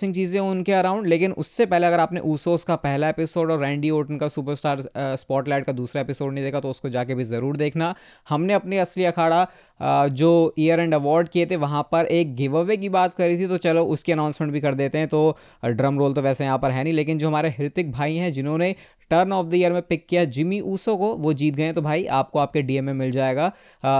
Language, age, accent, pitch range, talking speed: Hindi, 20-39, native, 140-175 Hz, 235 wpm